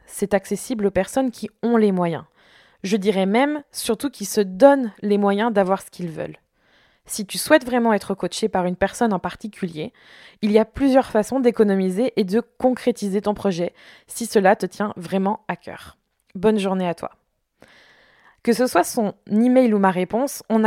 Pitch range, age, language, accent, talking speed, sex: 195-240 Hz, 20-39, French, French, 185 wpm, female